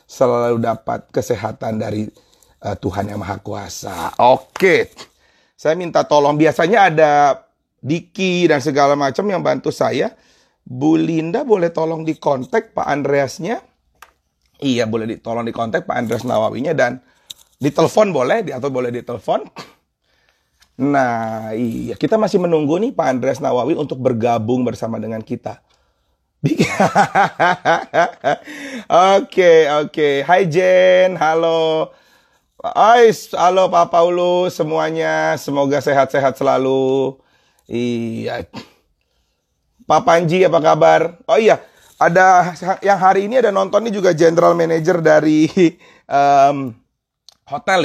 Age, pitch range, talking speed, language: 30-49, 125-180 Hz, 115 wpm, Indonesian